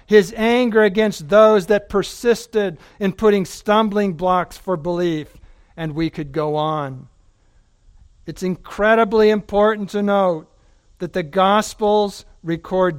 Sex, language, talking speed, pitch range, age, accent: male, English, 120 wpm, 105-160 Hz, 60-79, American